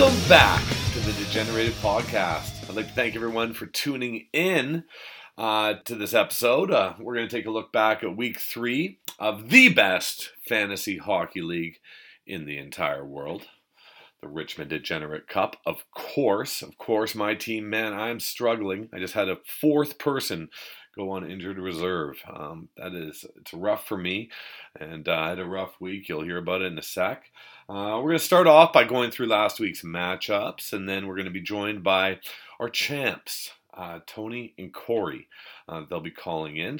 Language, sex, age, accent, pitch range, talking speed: English, male, 40-59, American, 95-125 Hz, 185 wpm